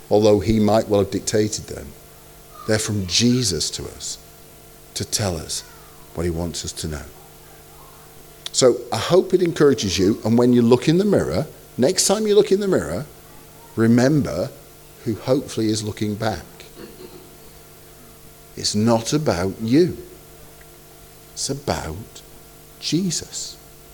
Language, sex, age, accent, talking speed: English, male, 50-69, British, 135 wpm